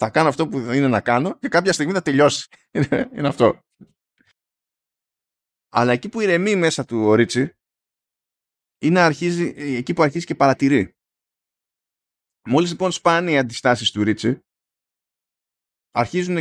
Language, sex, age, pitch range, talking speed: Greek, male, 20-39, 110-160 Hz, 135 wpm